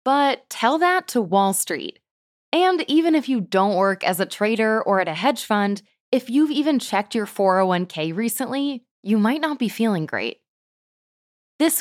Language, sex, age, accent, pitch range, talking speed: English, female, 20-39, American, 190-260 Hz, 175 wpm